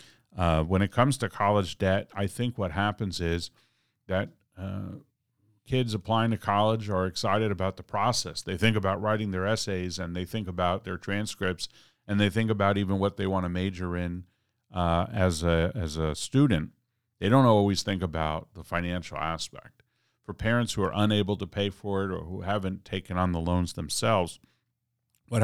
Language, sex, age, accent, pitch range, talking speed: English, male, 50-69, American, 90-110 Hz, 180 wpm